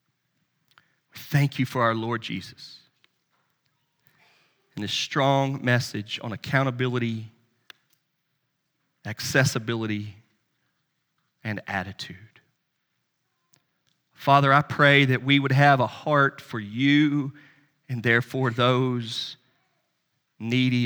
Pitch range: 120-155 Hz